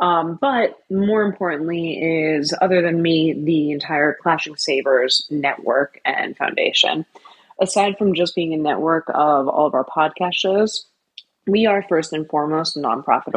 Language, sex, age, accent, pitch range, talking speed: English, female, 20-39, American, 150-195 Hz, 155 wpm